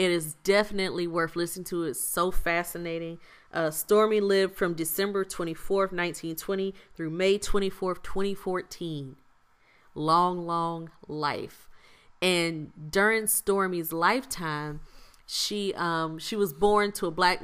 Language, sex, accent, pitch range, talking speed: English, female, American, 160-190 Hz, 120 wpm